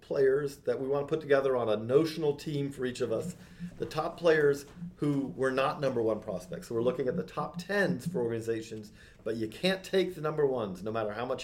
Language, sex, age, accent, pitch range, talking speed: English, male, 40-59, American, 135-175 Hz, 230 wpm